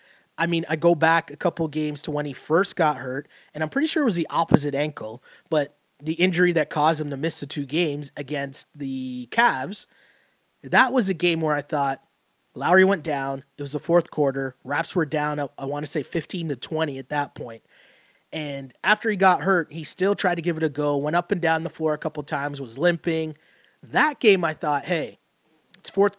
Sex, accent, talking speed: male, American, 220 wpm